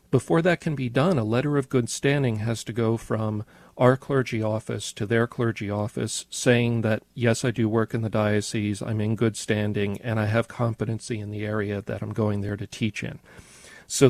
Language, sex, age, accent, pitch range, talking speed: English, male, 40-59, American, 110-125 Hz, 210 wpm